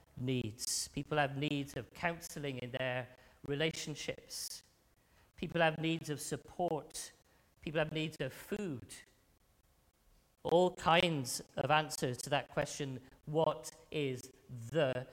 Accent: British